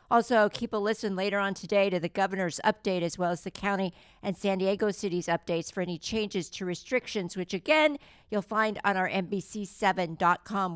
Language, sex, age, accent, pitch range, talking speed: English, female, 50-69, American, 185-225 Hz, 185 wpm